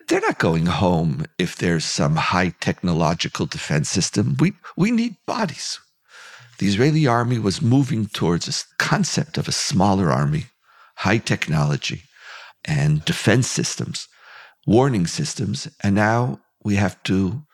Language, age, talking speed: English, 50-69, 135 wpm